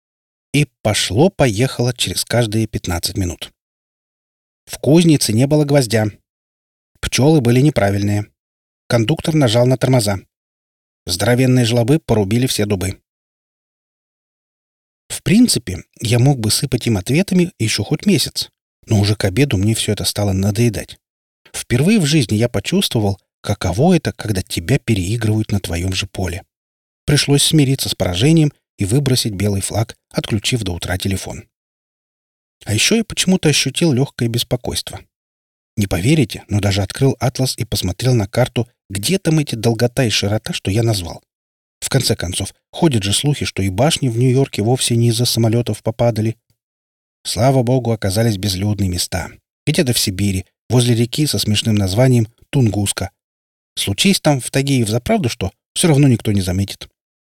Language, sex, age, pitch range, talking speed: Russian, male, 30-49, 100-130 Hz, 145 wpm